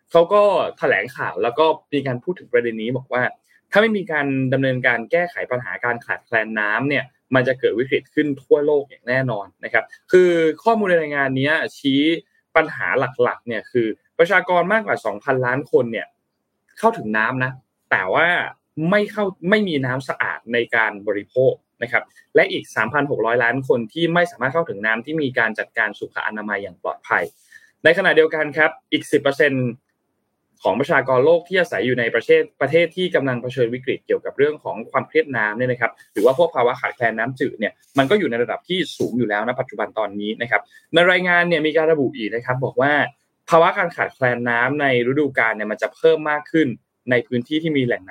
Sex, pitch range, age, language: male, 125-205 Hz, 20-39, Thai